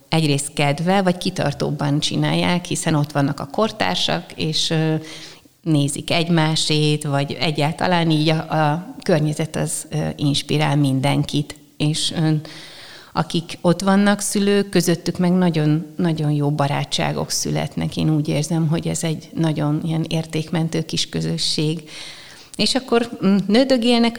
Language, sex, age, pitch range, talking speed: Hungarian, female, 30-49, 145-170 Hz, 120 wpm